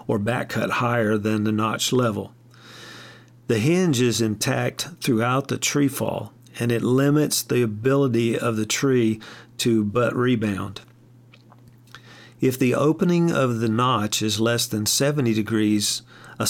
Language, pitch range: English, 110-130 Hz